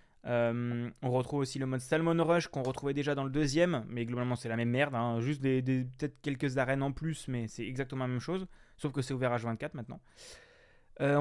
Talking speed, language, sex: 225 wpm, French, male